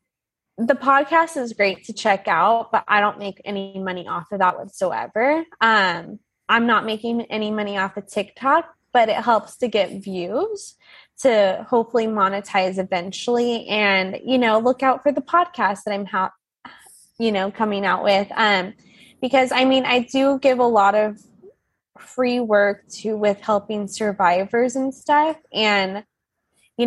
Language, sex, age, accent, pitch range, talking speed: English, female, 20-39, American, 195-235 Hz, 160 wpm